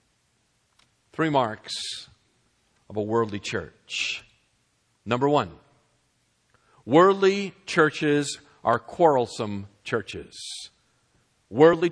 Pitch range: 120-175 Hz